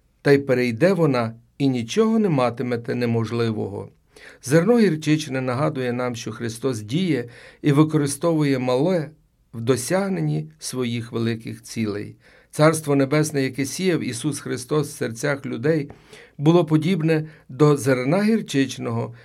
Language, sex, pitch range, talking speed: Ukrainian, male, 125-155 Hz, 120 wpm